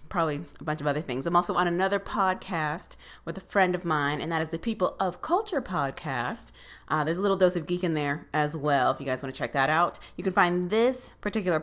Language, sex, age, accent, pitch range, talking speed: English, female, 30-49, American, 150-200 Hz, 245 wpm